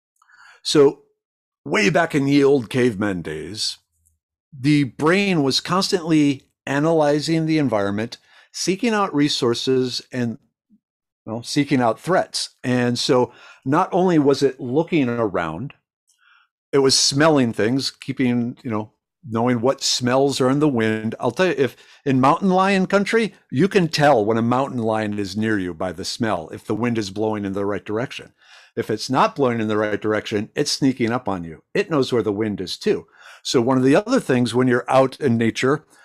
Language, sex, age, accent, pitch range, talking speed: English, male, 50-69, American, 115-150 Hz, 180 wpm